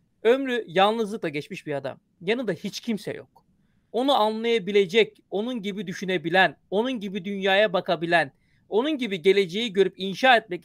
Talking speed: 135 wpm